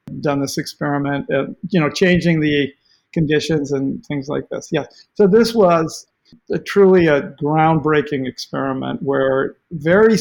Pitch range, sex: 145-180 Hz, male